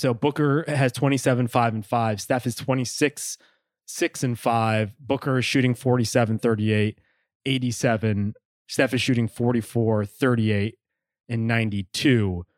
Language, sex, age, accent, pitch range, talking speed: English, male, 20-39, American, 120-145 Hz, 125 wpm